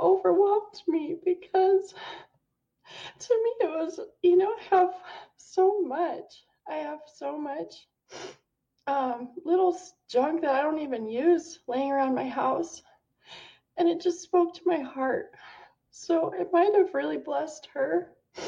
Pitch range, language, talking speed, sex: 265-360 Hz, English, 140 wpm, female